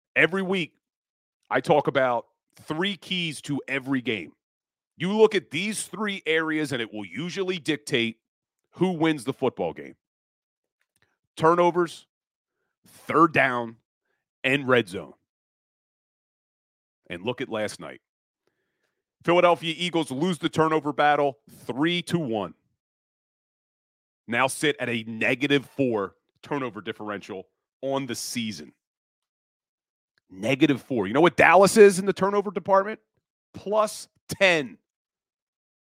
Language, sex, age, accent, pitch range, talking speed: English, male, 40-59, American, 125-175 Hz, 115 wpm